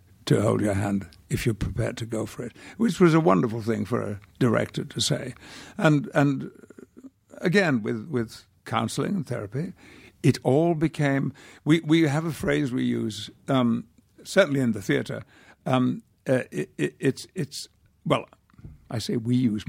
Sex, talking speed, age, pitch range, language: male, 170 wpm, 60-79, 110-140 Hz, English